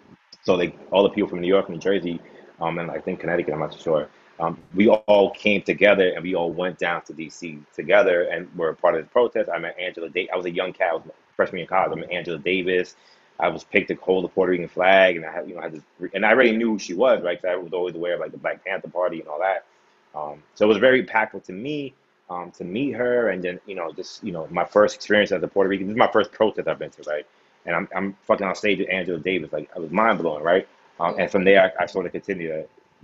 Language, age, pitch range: English, 30-49, 85-100 Hz